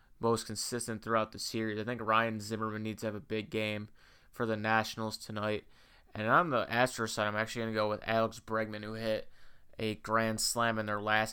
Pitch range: 105-115 Hz